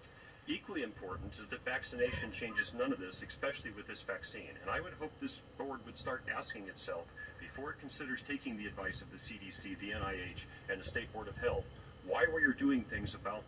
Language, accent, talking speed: English, American, 205 wpm